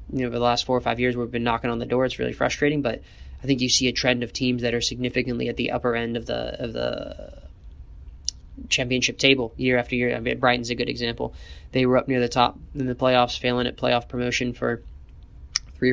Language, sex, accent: English, male, American